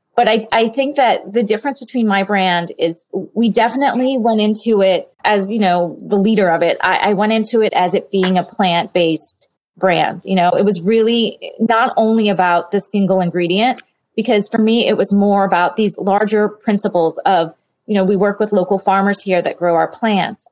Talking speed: 200 wpm